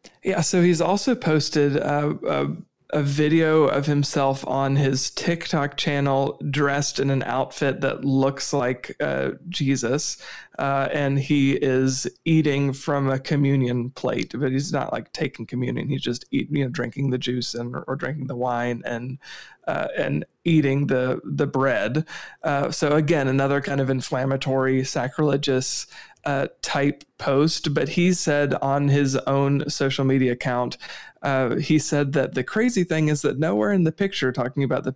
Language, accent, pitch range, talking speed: English, American, 130-150 Hz, 165 wpm